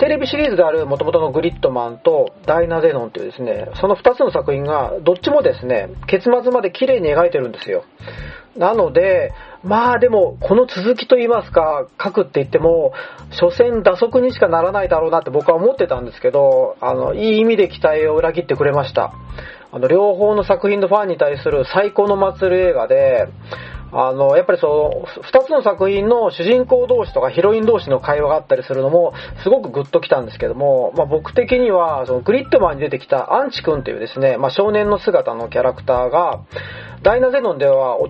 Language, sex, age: Japanese, male, 40-59